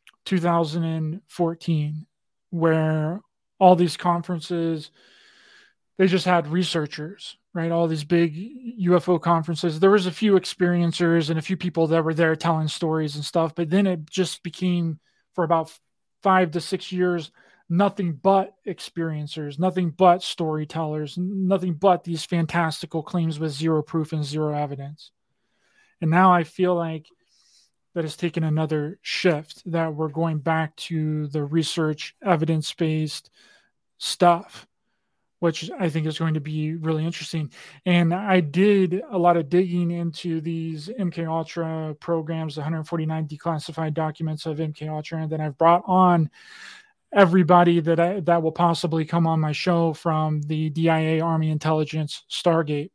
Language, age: English, 20-39